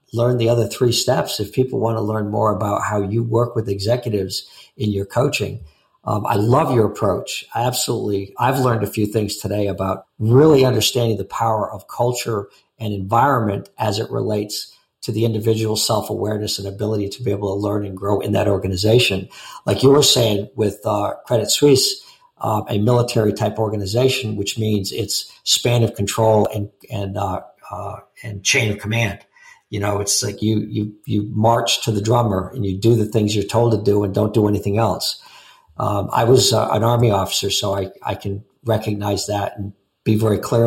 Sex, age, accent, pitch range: male, 50-69, American, 100-115 Hz